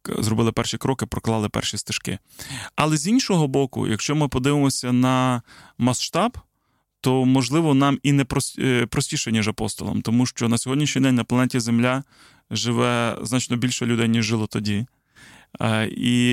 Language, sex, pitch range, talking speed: Ukrainian, male, 115-135 Hz, 145 wpm